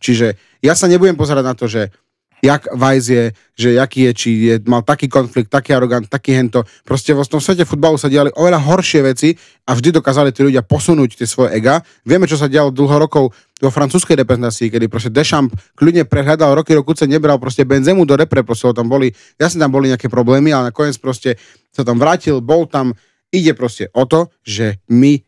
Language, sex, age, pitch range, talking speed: Slovak, male, 30-49, 120-150 Hz, 200 wpm